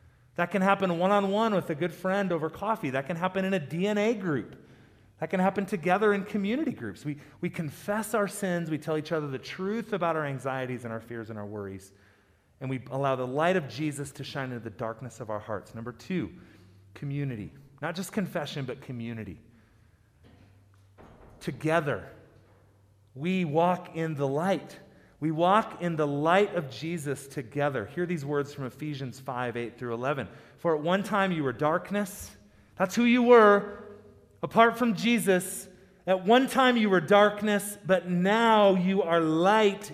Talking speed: 175 wpm